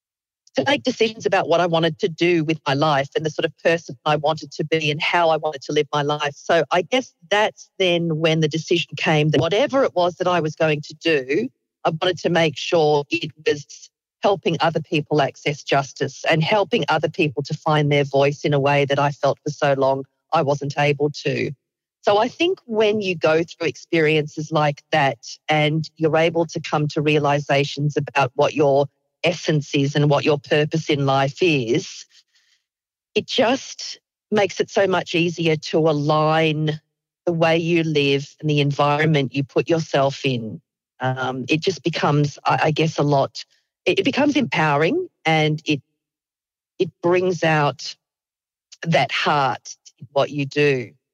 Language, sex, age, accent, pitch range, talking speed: English, female, 40-59, Australian, 145-165 Hz, 180 wpm